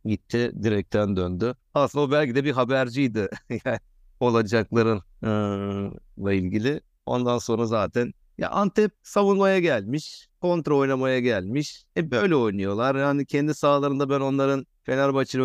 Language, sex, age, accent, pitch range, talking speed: Turkish, male, 50-69, native, 100-135 Hz, 130 wpm